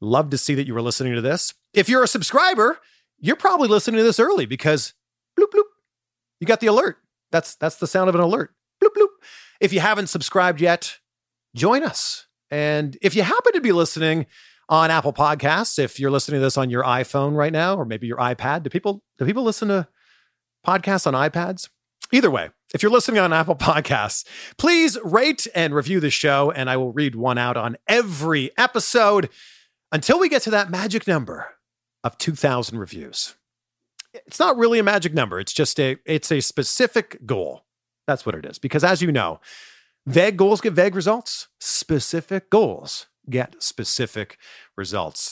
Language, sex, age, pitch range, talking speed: English, male, 30-49, 140-220 Hz, 185 wpm